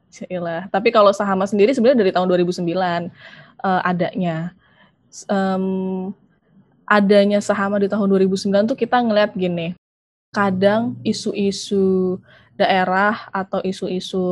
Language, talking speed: Indonesian, 110 wpm